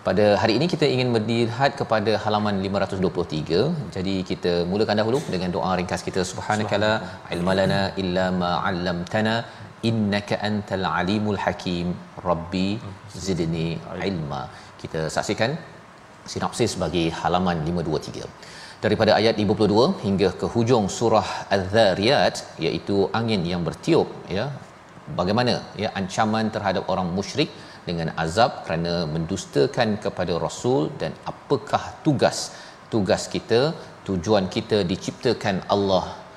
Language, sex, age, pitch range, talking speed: Malayalam, male, 40-59, 95-110 Hz, 110 wpm